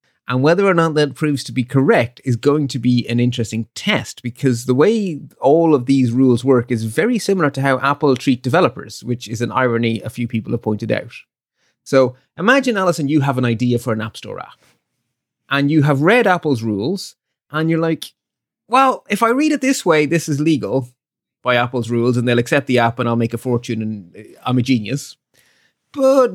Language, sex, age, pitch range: English, male, 30-49, 120-150 Hz